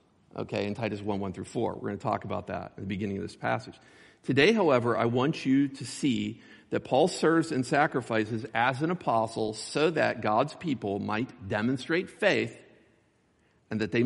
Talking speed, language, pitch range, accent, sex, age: 190 wpm, English, 110-145 Hz, American, male, 50-69